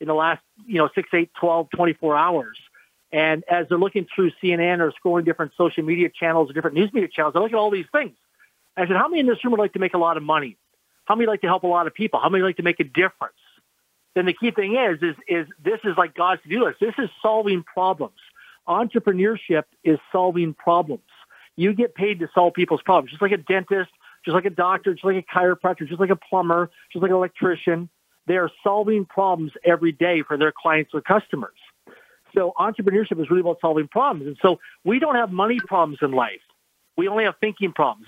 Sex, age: male, 50-69